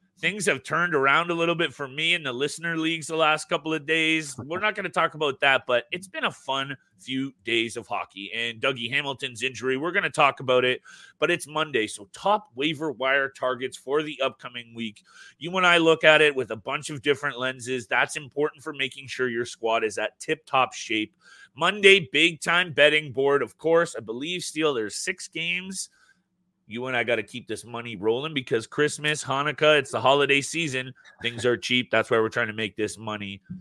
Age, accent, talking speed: 30-49, American, 210 wpm